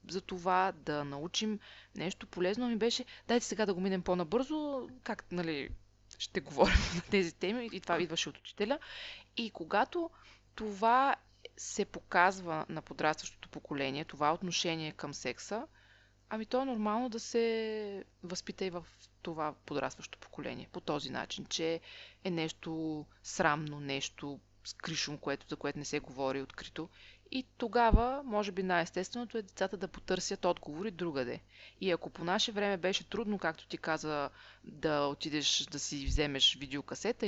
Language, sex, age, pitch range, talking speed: Bulgarian, female, 20-39, 145-210 Hz, 150 wpm